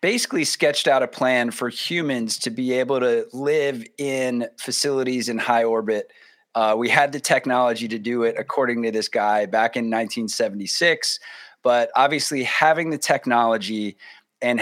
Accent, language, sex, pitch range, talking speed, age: American, English, male, 115-145 Hz, 155 wpm, 30-49